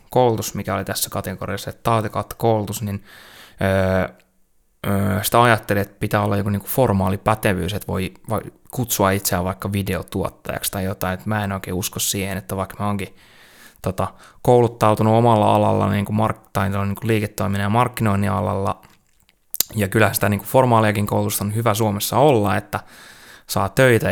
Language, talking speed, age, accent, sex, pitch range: Finnish, 165 wpm, 20-39, native, male, 95-110 Hz